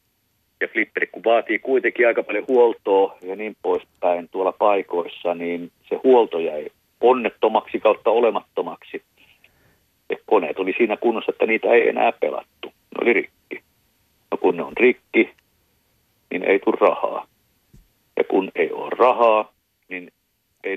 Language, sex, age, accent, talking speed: Finnish, male, 50-69, native, 140 wpm